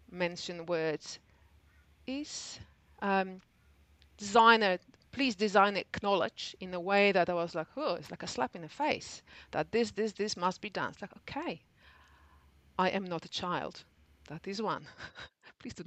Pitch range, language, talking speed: 165-220 Hz, English, 165 wpm